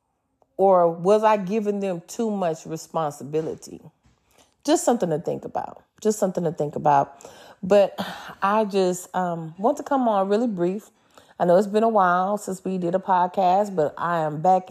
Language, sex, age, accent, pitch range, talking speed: English, female, 30-49, American, 160-200 Hz, 175 wpm